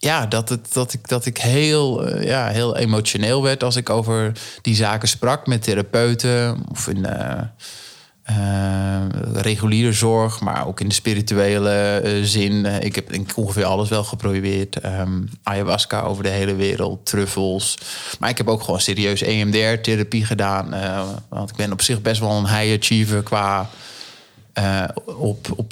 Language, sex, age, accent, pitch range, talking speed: Dutch, male, 20-39, Dutch, 100-120 Hz, 165 wpm